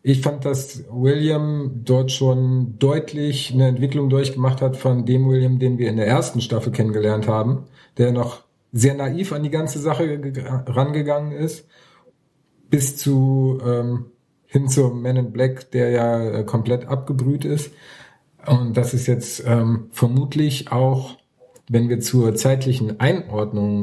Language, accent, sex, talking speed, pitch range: German, German, male, 150 wpm, 120-140 Hz